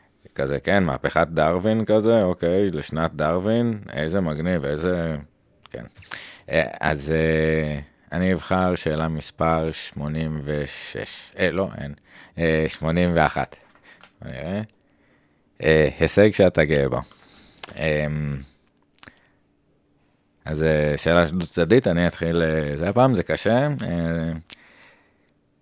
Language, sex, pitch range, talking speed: Hebrew, male, 75-90 Hz, 95 wpm